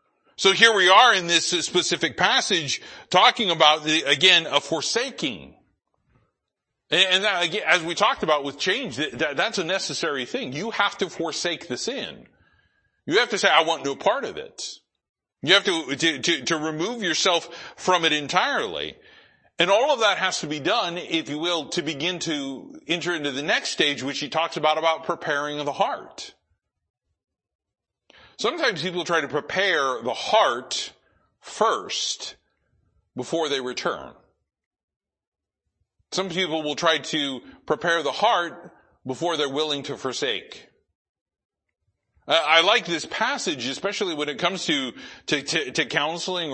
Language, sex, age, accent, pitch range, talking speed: English, male, 40-59, American, 145-180 Hz, 155 wpm